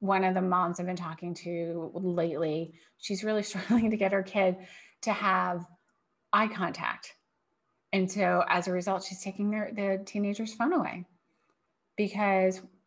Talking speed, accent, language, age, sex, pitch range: 155 wpm, American, English, 30-49, female, 175-210 Hz